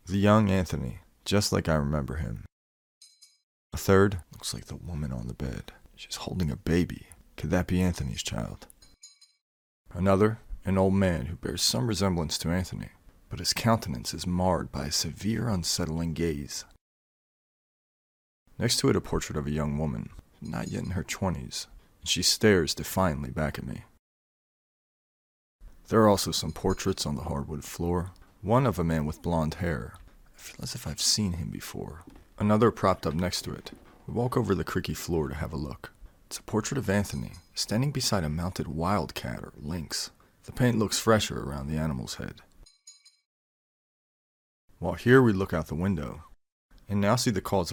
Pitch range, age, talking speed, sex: 75-100 Hz, 30-49, 175 wpm, male